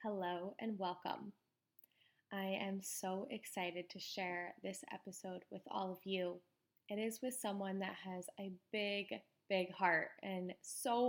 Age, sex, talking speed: 10-29, female, 145 wpm